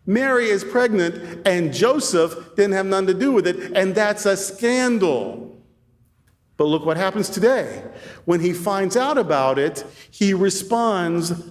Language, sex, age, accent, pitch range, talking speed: English, male, 40-59, American, 150-215 Hz, 150 wpm